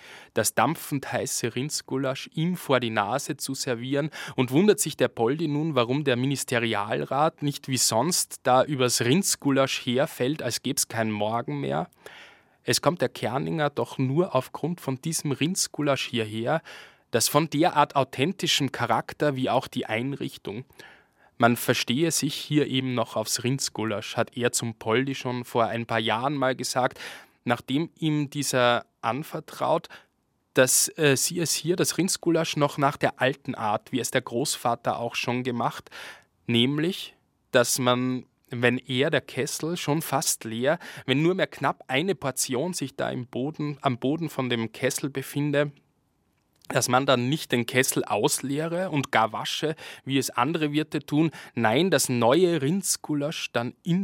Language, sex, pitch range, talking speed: German, male, 120-150 Hz, 155 wpm